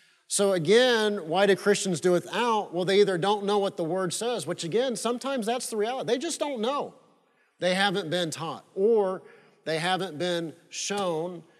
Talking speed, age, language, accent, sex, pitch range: 180 wpm, 40-59, English, American, male, 175-210 Hz